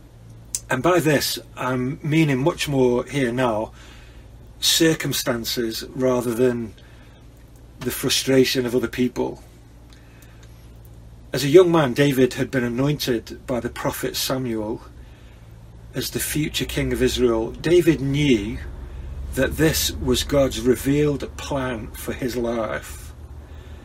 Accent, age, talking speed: British, 40-59, 115 wpm